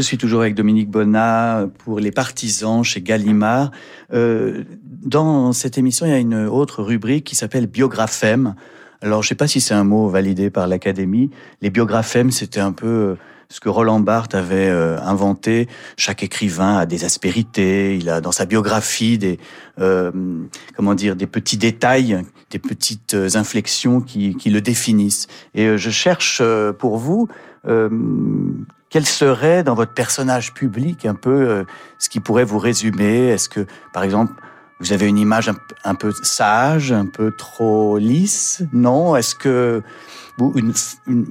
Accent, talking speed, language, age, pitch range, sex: French, 165 wpm, French, 40-59, 100-130 Hz, male